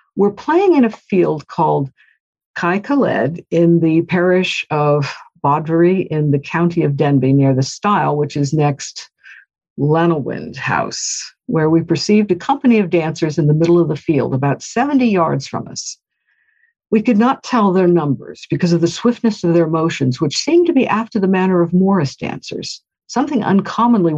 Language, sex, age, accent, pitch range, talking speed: English, female, 60-79, American, 145-205 Hz, 170 wpm